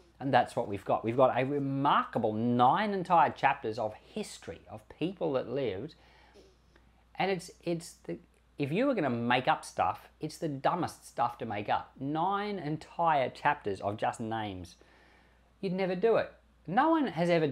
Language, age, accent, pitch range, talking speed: English, 40-59, Australian, 115-185 Hz, 175 wpm